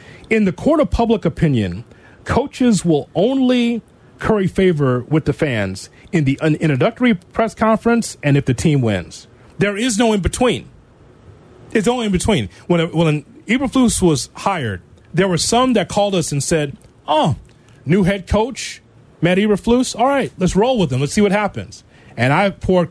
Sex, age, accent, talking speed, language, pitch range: male, 30-49, American, 165 wpm, English, 130-200 Hz